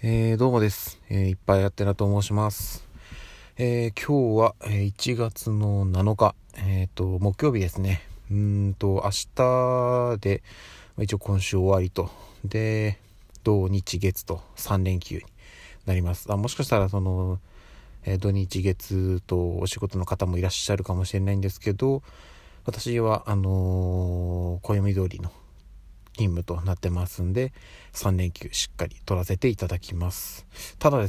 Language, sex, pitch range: Japanese, male, 95-105 Hz